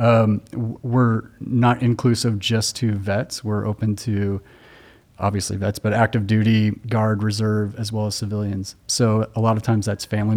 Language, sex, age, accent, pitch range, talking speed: English, male, 30-49, American, 105-115 Hz, 160 wpm